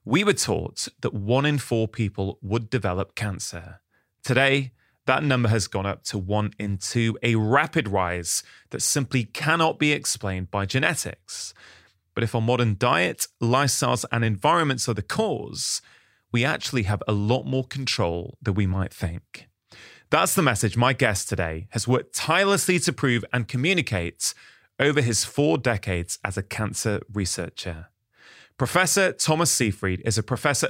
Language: English